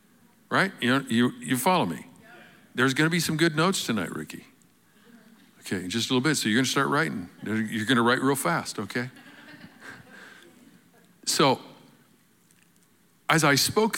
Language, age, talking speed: English, 50-69, 165 wpm